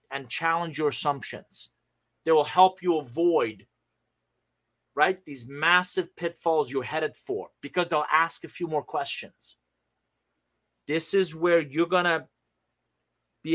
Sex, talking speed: male, 135 wpm